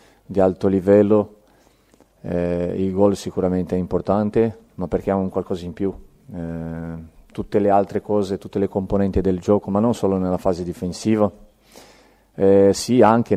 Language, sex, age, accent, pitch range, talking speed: Italian, male, 40-59, native, 95-105 Hz, 155 wpm